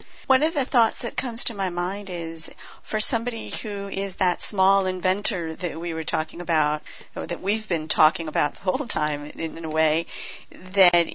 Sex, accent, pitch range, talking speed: female, American, 175-220 Hz, 195 wpm